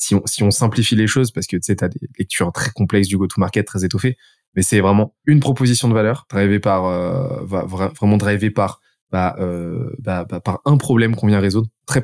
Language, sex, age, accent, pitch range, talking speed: French, male, 20-39, French, 105-130 Hz, 210 wpm